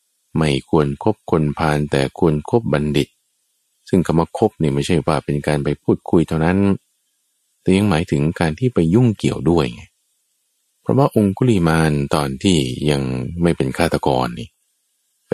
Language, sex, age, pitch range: Thai, male, 20-39, 70-90 Hz